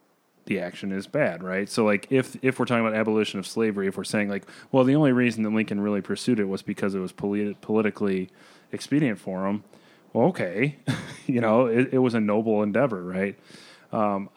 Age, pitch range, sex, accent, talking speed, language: 30-49, 100-120 Hz, male, American, 205 wpm, English